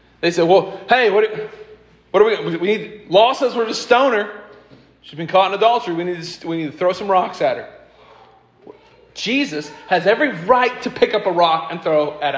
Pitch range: 140-210 Hz